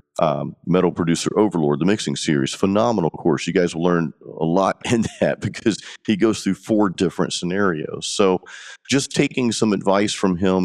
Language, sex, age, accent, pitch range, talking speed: English, male, 40-59, American, 85-115 Hz, 175 wpm